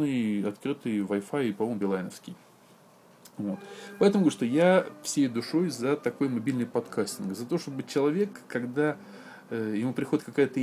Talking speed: 135 wpm